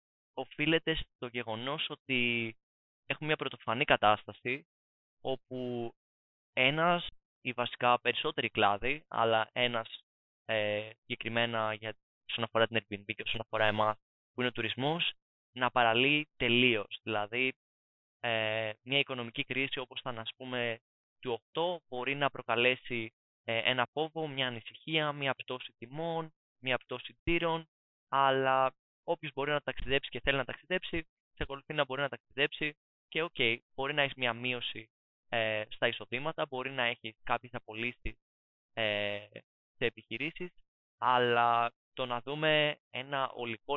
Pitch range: 115-140 Hz